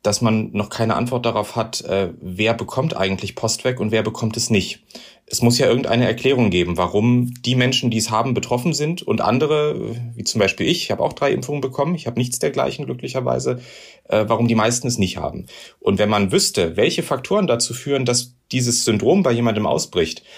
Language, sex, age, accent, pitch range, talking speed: German, male, 30-49, German, 95-120 Hz, 195 wpm